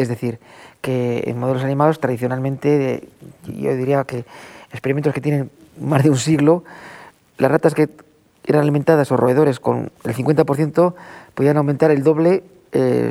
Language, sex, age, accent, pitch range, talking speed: Spanish, male, 40-59, Spanish, 130-165 Hz, 145 wpm